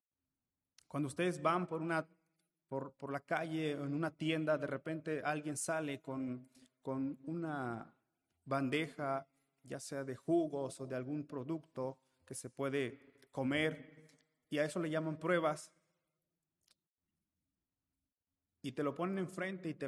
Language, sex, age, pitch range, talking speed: Spanish, male, 30-49, 135-170 Hz, 140 wpm